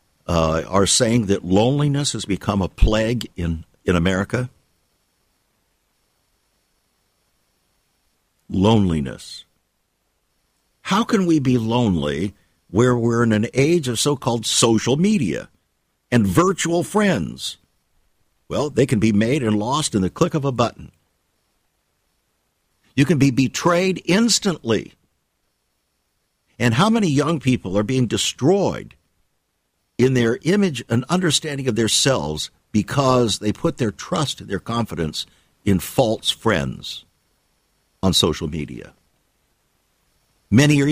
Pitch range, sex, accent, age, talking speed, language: 90-130 Hz, male, American, 60-79, 115 wpm, English